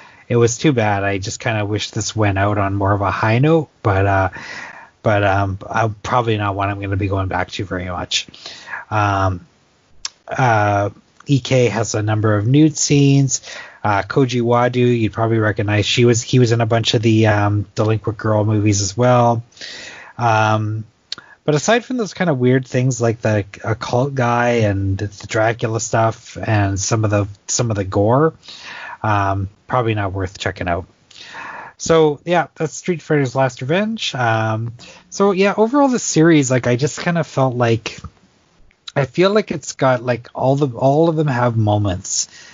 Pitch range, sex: 105-130 Hz, male